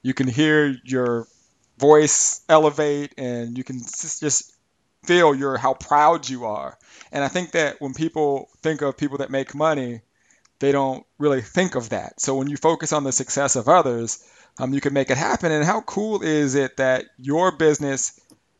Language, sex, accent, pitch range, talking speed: English, male, American, 130-160 Hz, 185 wpm